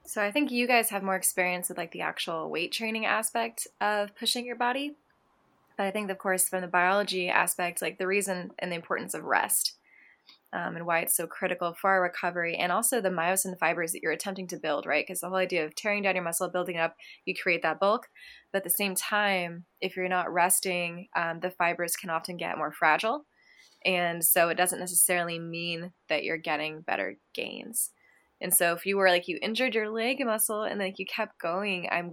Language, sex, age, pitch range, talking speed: English, female, 20-39, 170-200 Hz, 215 wpm